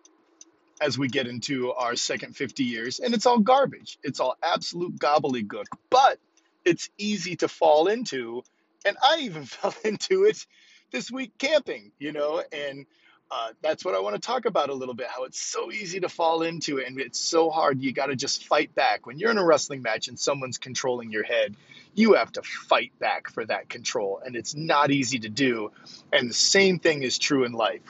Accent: American